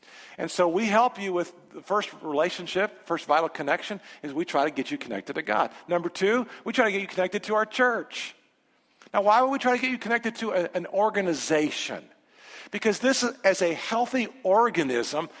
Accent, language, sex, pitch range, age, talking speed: American, English, male, 170-225 Hz, 50-69, 195 wpm